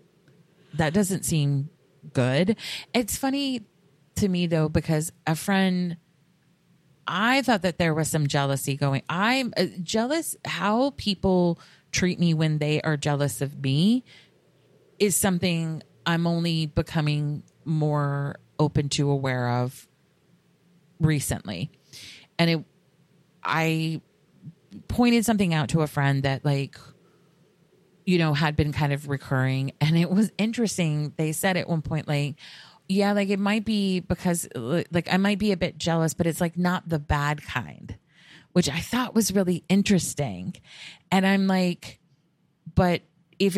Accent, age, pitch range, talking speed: American, 30-49, 150-185 Hz, 140 wpm